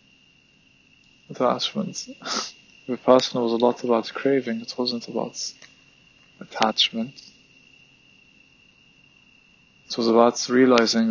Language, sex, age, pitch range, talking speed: English, male, 20-39, 115-130 Hz, 80 wpm